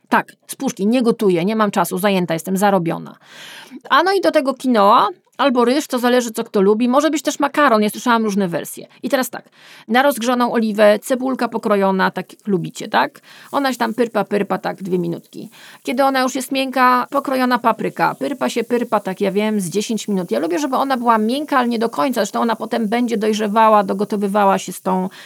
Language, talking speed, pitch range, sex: Polish, 205 wpm, 210-260 Hz, female